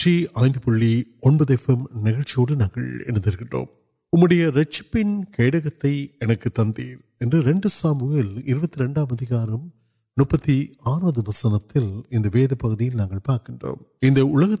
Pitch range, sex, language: 120-160 Hz, male, Urdu